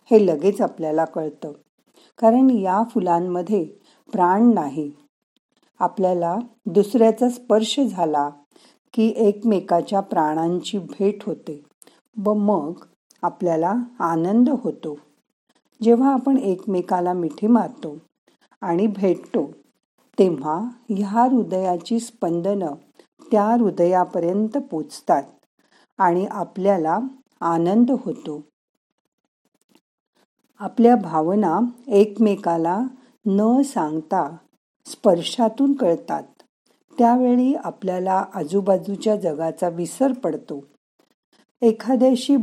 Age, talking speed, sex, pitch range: 50-69, 80 wpm, female, 170-240 Hz